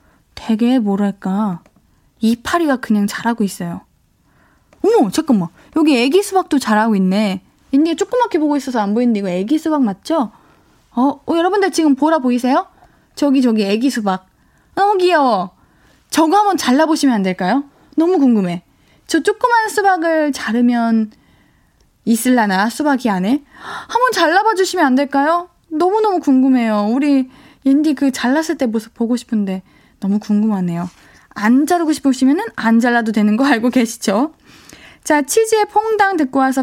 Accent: native